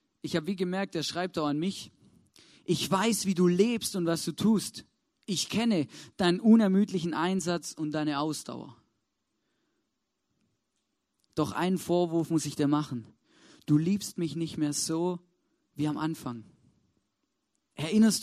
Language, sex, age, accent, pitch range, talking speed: German, male, 40-59, German, 160-220 Hz, 140 wpm